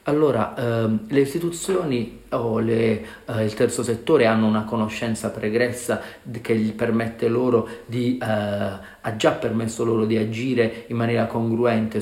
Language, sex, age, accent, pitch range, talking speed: Italian, male, 40-59, native, 110-125 Hz, 145 wpm